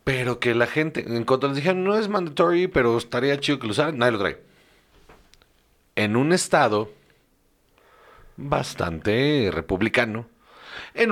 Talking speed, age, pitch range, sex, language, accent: 140 wpm, 40-59, 100-130 Hz, male, Spanish, Mexican